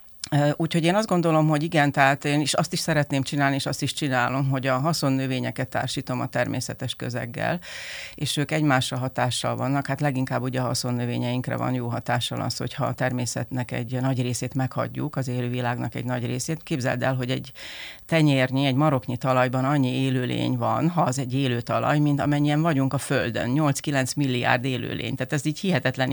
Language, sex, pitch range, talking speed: Hungarian, female, 130-150 Hz, 180 wpm